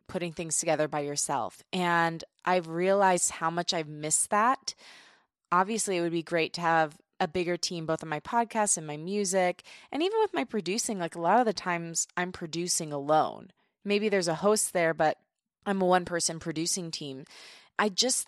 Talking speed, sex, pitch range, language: 190 wpm, female, 165-200 Hz, English